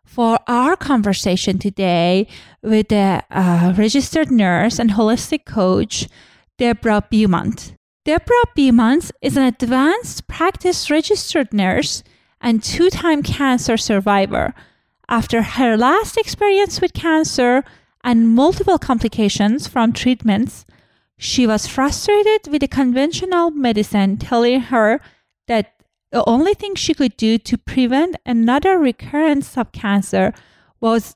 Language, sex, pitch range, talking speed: English, female, 220-315 Hz, 115 wpm